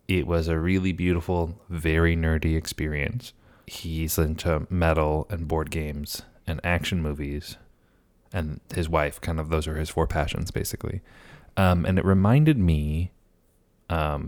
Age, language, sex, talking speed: 20-39, English, male, 145 wpm